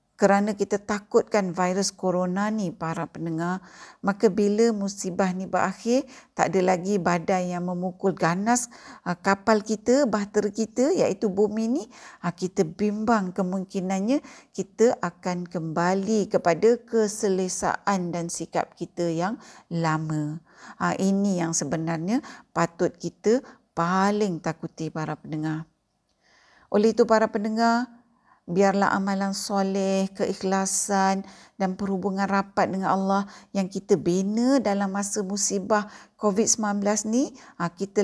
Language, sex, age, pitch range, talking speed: Malay, female, 50-69, 180-220 Hz, 110 wpm